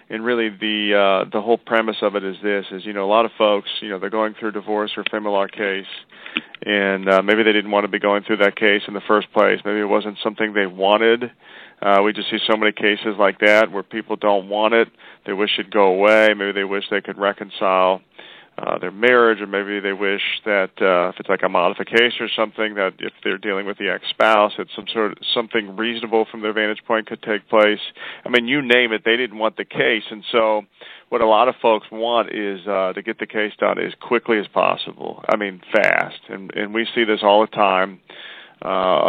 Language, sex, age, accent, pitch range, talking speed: English, male, 40-59, American, 100-110 Hz, 240 wpm